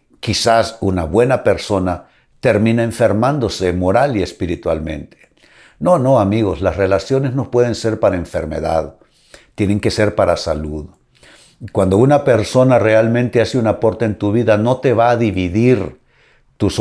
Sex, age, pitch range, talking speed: male, 60-79, 95-120 Hz, 145 wpm